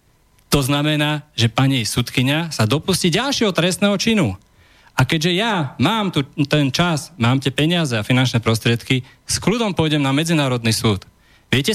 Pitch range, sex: 135-185 Hz, male